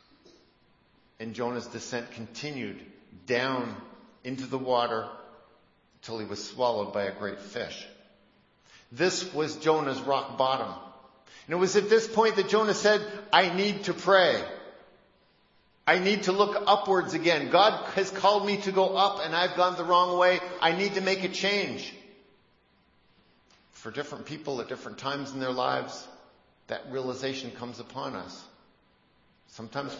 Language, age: English, 50-69